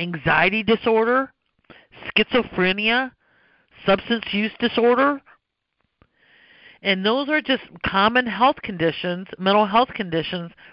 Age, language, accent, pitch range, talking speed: 50-69, English, American, 170-235 Hz, 90 wpm